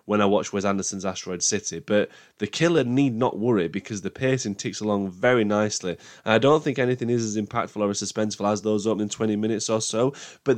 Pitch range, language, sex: 100-120 Hz, English, male